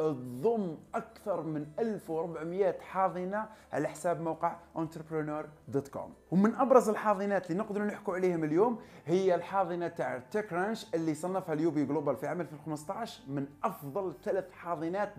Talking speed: 125 wpm